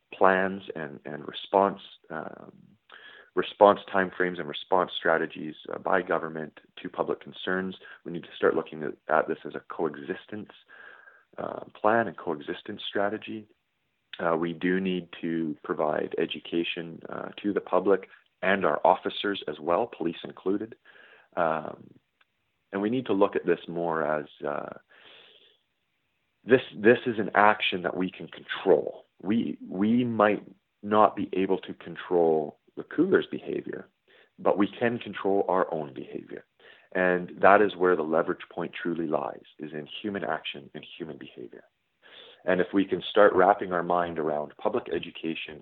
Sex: male